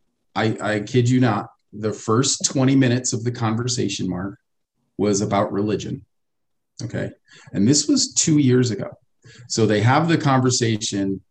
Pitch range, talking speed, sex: 110-130 Hz, 150 wpm, male